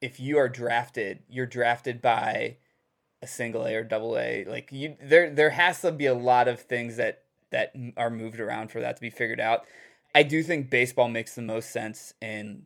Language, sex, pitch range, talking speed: English, male, 115-140 Hz, 210 wpm